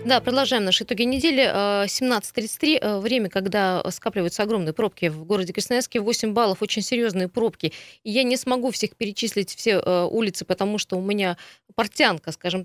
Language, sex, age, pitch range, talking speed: Russian, female, 20-39, 185-225 Hz, 155 wpm